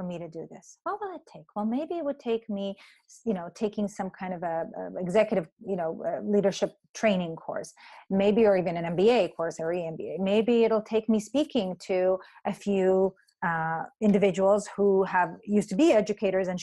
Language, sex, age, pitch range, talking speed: English, female, 30-49, 195-245 Hz, 195 wpm